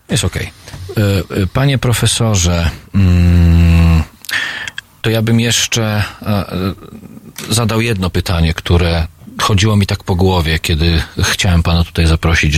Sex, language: male, Polish